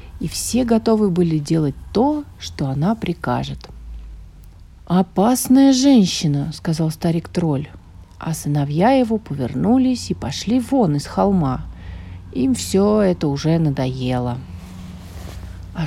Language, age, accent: Russian, 40-59, native